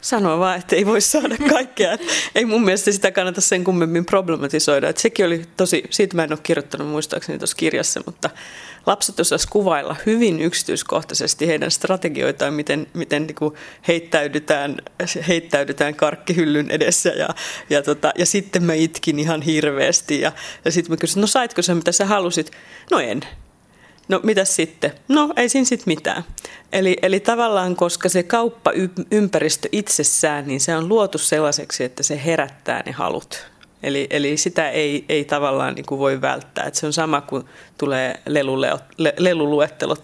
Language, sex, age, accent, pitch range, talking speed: Finnish, female, 30-49, native, 150-190 Hz, 155 wpm